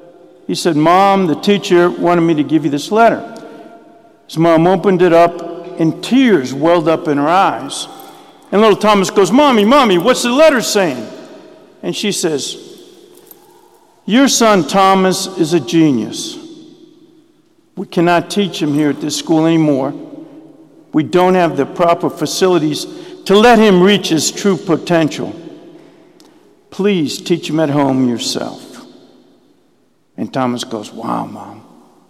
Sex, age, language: male, 50-69, English